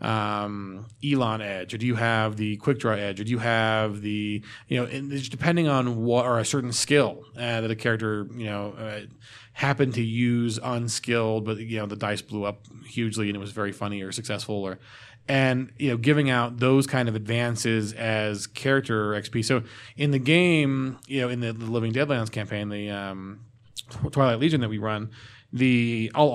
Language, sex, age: English, male, 20-39